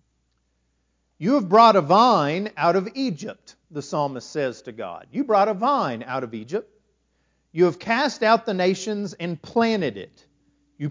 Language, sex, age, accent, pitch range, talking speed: English, male, 40-59, American, 155-230 Hz, 165 wpm